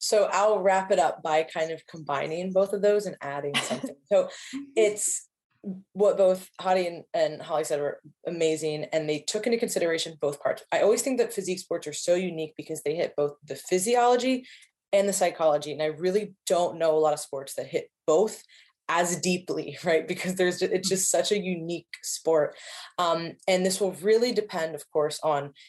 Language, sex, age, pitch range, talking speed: English, female, 20-39, 160-215 Hz, 195 wpm